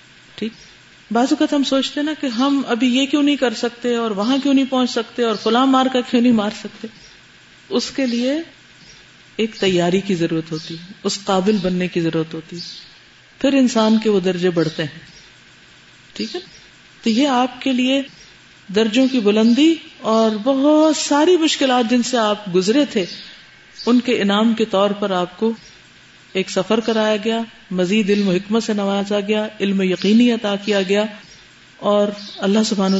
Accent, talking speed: Indian, 165 wpm